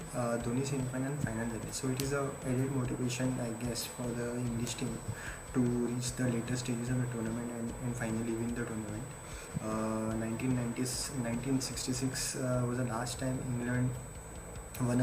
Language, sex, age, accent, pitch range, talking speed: Marathi, male, 20-39, native, 115-130 Hz, 170 wpm